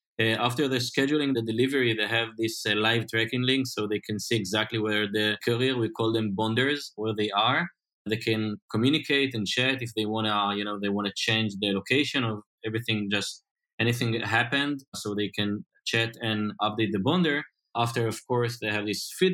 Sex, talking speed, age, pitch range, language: male, 195 wpm, 20-39, 110-130 Hz, English